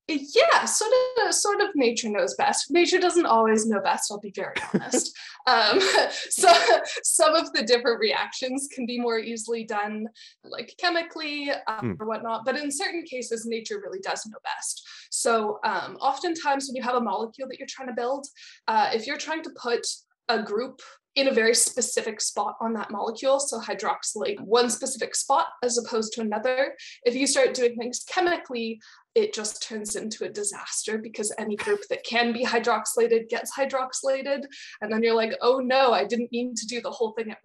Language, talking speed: English, 185 wpm